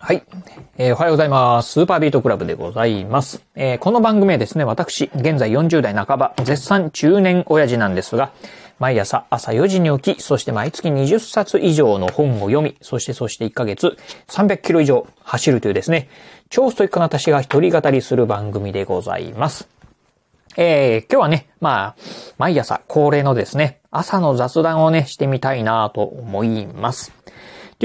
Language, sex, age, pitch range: Japanese, male, 30-49, 120-165 Hz